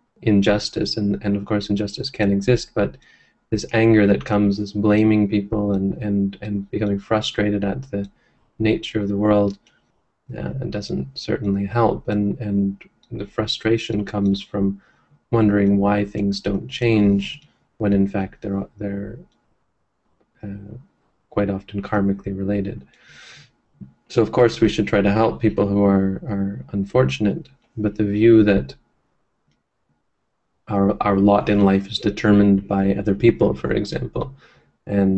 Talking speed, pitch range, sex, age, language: 140 wpm, 100-110 Hz, male, 30-49, English